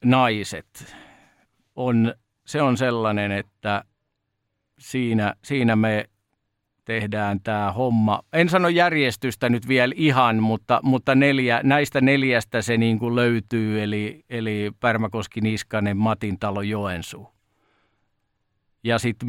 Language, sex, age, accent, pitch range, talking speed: Finnish, male, 50-69, native, 105-120 Hz, 110 wpm